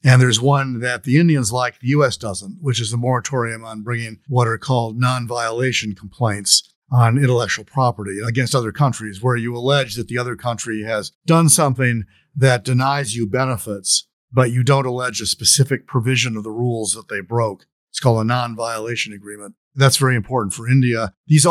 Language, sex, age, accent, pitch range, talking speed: English, male, 50-69, American, 110-135 Hz, 180 wpm